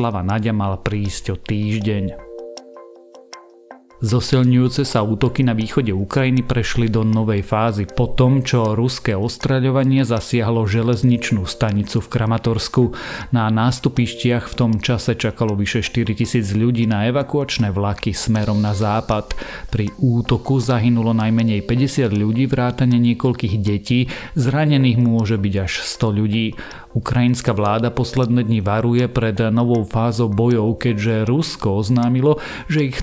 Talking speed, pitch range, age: 120 wpm, 110-125 Hz, 40-59